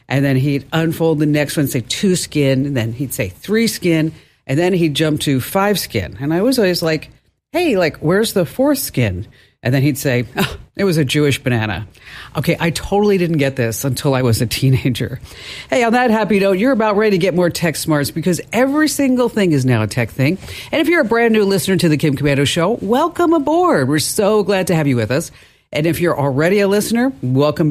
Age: 50-69